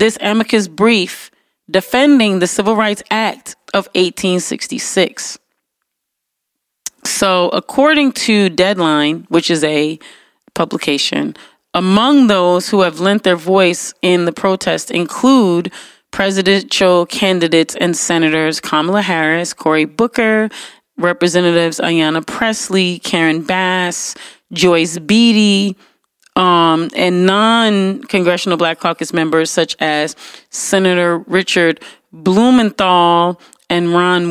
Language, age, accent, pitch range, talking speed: English, 30-49, American, 170-205 Hz, 100 wpm